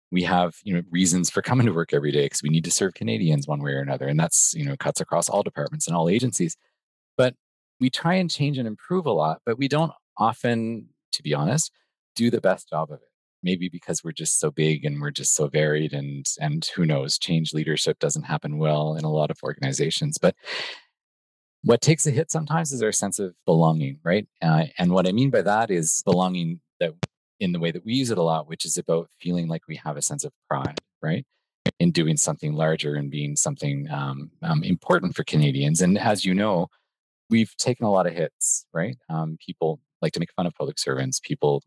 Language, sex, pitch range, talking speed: English, male, 75-125 Hz, 225 wpm